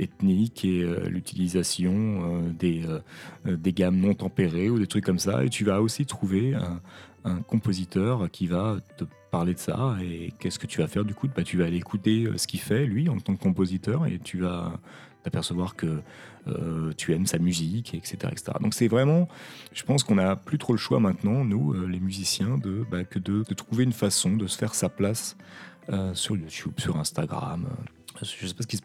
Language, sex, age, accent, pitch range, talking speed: French, male, 30-49, French, 90-115 Hz, 205 wpm